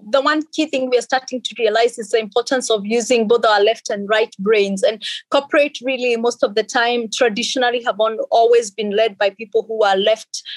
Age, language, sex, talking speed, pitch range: 30-49, English, female, 210 wpm, 205-240 Hz